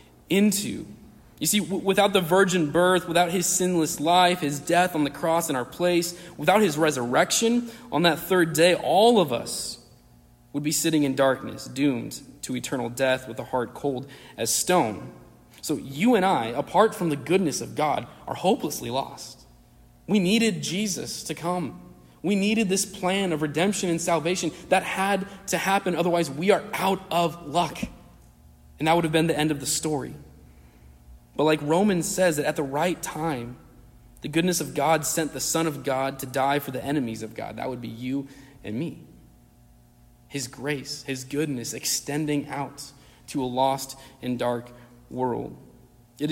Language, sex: English, male